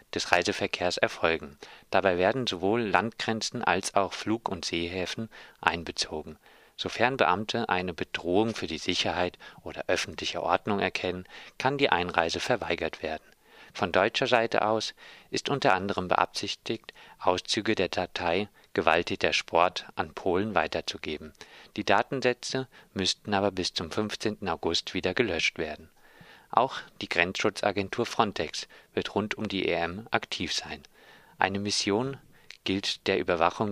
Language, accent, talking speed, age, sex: German, German, 130 wpm, 40-59, male